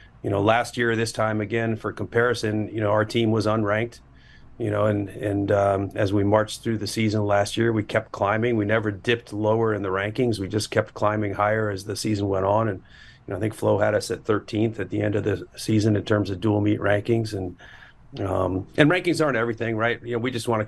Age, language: 40-59, English